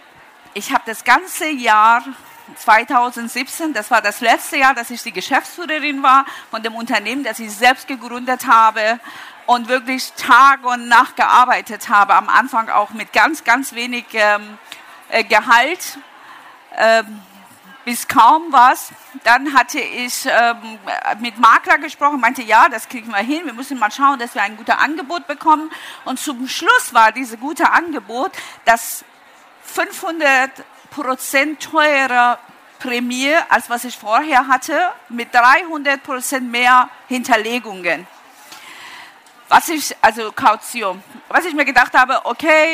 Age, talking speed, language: 50-69, 130 wpm, German